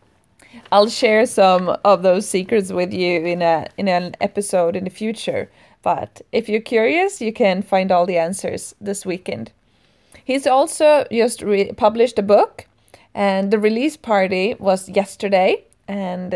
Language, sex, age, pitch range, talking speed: English, female, 20-39, 180-215 Hz, 155 wpm